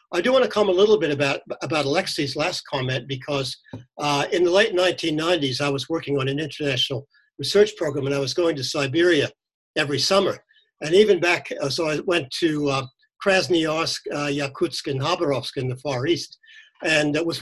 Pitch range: 140-190 Hz